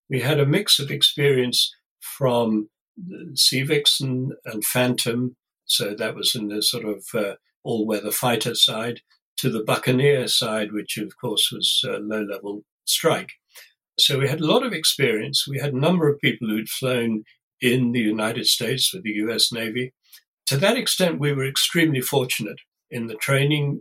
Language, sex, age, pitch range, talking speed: English, male, 60-79, 115-145 Hz, 165 wpm